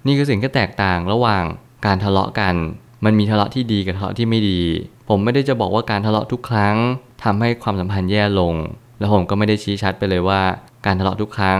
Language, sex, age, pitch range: Thai, male, 20-39, 95-120 Hz